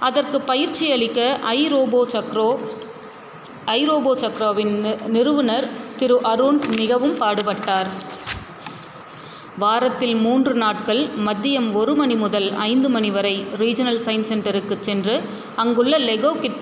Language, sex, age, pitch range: Tamil, female, 30-49, 210-250 Hz